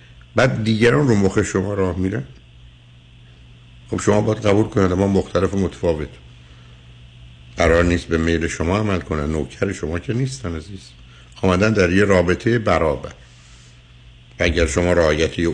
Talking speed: 140 wpm